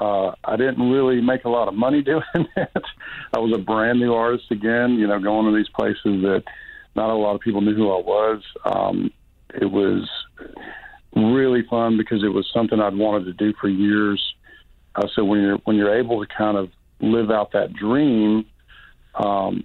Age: 50-69